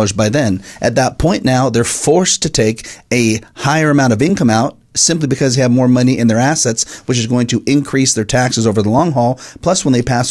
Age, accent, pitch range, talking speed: 40-59, American, 110-130 Hz, 235 wpm